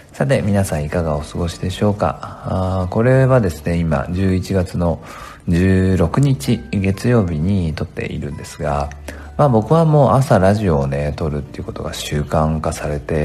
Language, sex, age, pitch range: Japanese, male, 40-59, 80-110 Hz